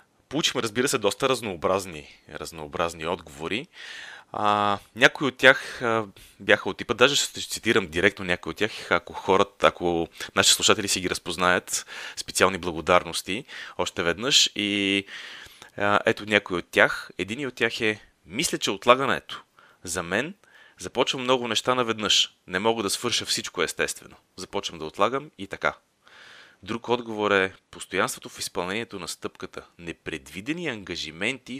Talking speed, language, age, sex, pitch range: 140 wpm, Bulgarian, 30-49, male, 90-115 Hz